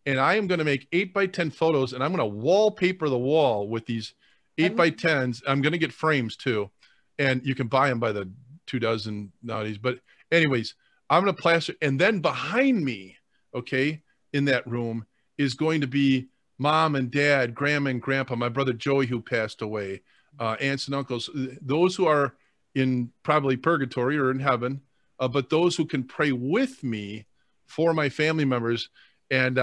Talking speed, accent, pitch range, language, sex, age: 190 wpm, American, 125-165 Hz, English, male, 40-59